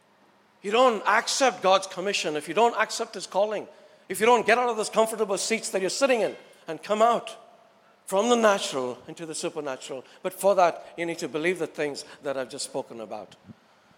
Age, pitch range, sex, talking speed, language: 60-79, 170-235 Hz, male, 200 wpm, English